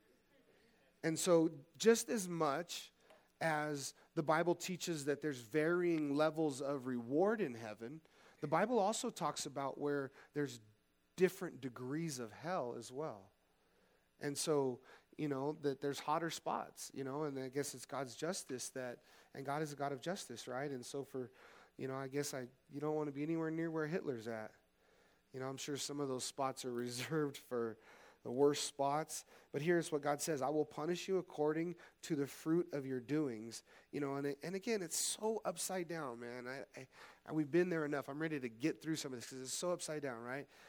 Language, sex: English, male